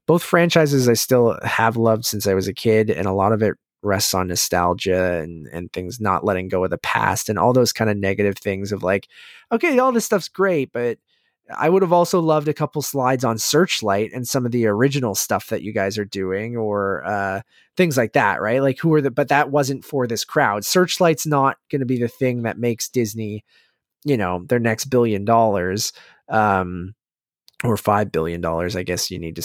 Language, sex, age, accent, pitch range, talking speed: English, male, 20-39, American, 105-135 Hz, 215 wpm